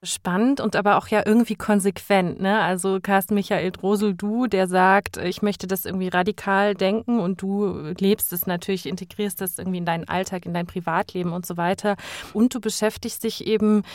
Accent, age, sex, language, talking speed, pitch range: German, 30-49, female, German, 185 wpm, 180-205 Hz